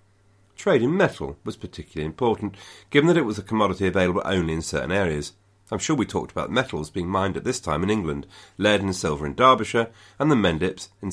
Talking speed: 210 wpm